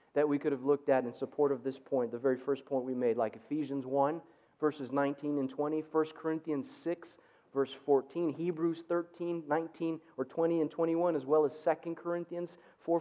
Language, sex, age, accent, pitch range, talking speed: English, male, 40-59, American, 140-170 Hz, 195 wpm